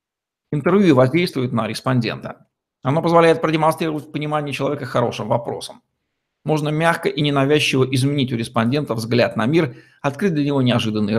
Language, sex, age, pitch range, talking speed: Russian, male, 50-69, 120-155 Hz, 135 wpm